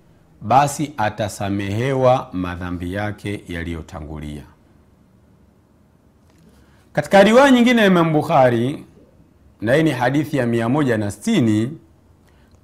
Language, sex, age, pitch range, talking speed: Swahili, male, 50-69, 105-170 Hz, 65 wpm